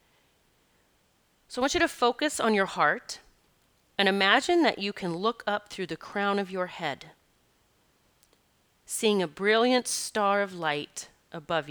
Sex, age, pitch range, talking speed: female, 30-49, 175-215 Hz, 150 wpm